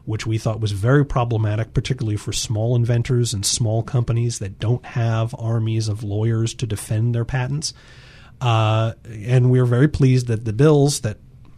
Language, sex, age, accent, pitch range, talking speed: English, male, 30-49, American, 105-125 Hz, 165 wpm